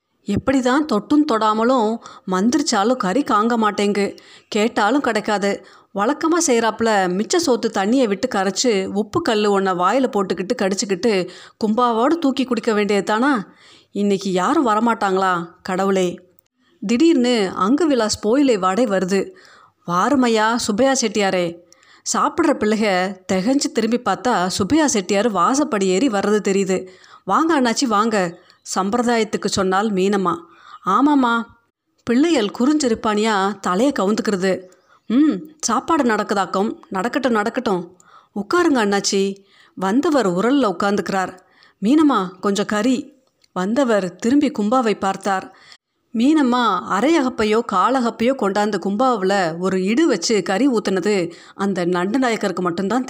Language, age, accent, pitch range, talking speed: Tamil, 30-49, native, 195-255 Hz, 105 wpm